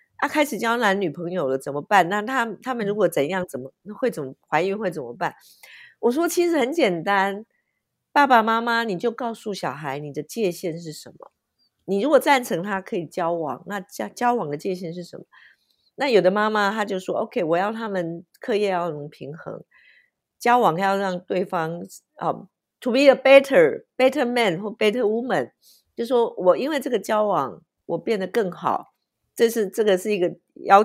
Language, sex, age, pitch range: Chinese, female, 50-69, 175-235 Hz